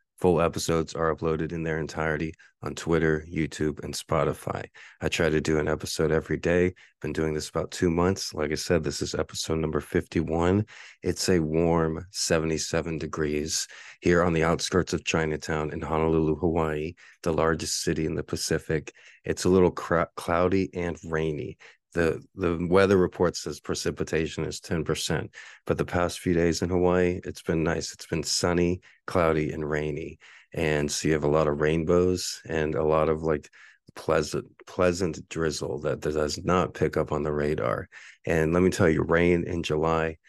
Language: English